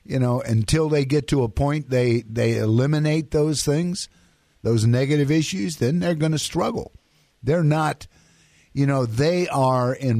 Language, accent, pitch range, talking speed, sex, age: English, American, 115-145 Hz, 165 wpm, male, 50-69